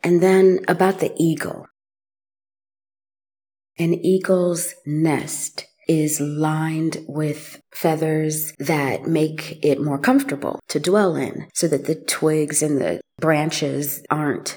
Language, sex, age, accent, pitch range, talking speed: English, female, 30-49, American, 145-175 Hz, 115 wpm